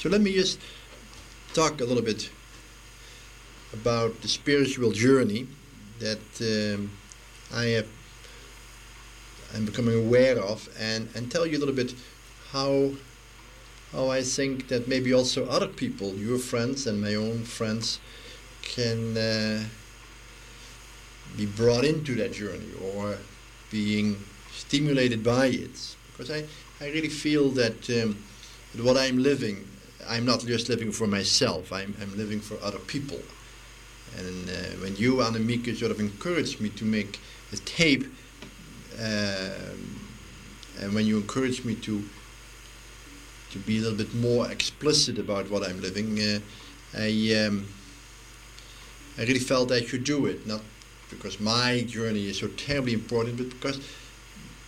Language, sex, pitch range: English, male, 105-125 Hz